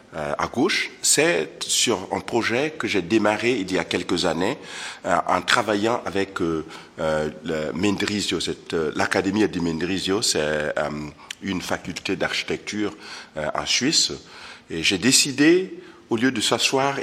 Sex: male